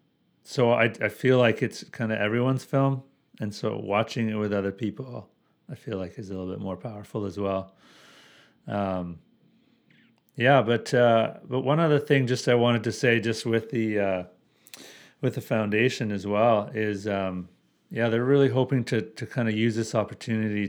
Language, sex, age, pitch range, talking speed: English, male, 40-59, 100-120 Hz, 185 wpm